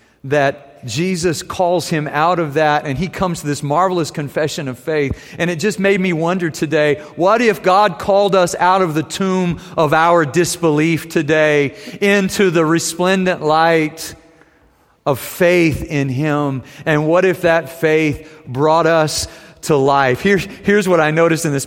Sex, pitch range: male, 145-180 Hz